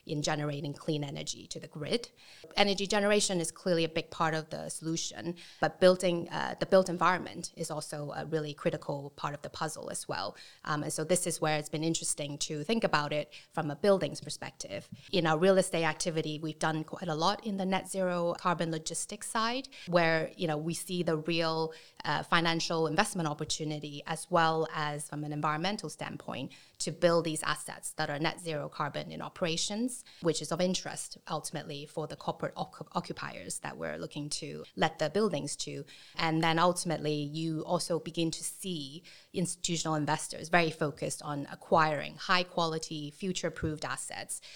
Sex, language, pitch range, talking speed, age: female, English, 155-180 Hz, 180 wpm, 20-39